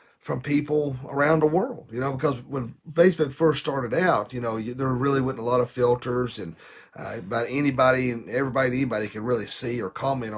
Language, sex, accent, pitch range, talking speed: English, male, American, 115-155 Hz, 195 wpm